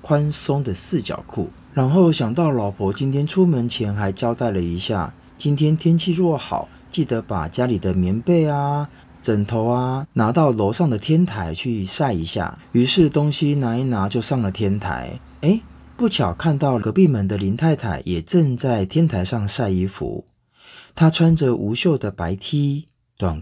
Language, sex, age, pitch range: Chinese, male, 30-49, 100-150 Hz